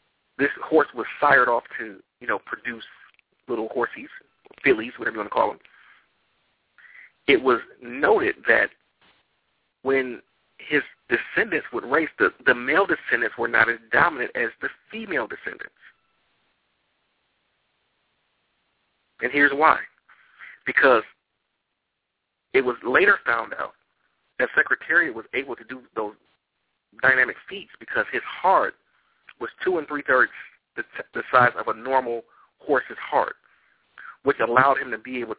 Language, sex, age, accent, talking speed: English, male, 40-59, American, 135 wpm